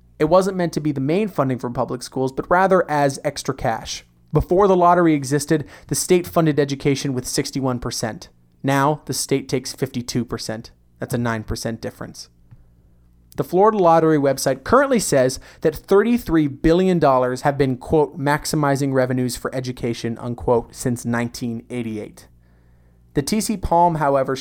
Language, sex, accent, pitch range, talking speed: English, male, American, 120-155 Hz, 145 wpm